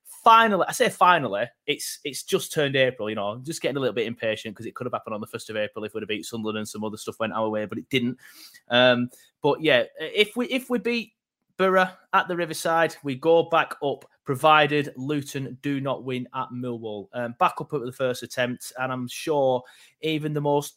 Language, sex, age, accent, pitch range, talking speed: English, male, 30-49, British, 115-145 Hz, 230 wpm